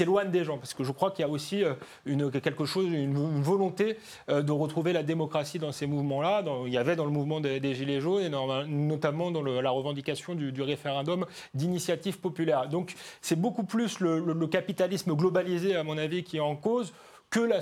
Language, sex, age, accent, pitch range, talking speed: French, male, 30-49, French, 150-195 Hz, 220 wpm